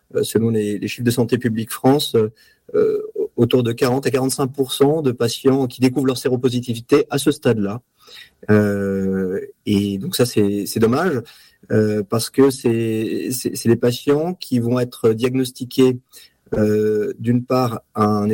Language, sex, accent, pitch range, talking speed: French, male, French, 110-135 Hz, 155 wpm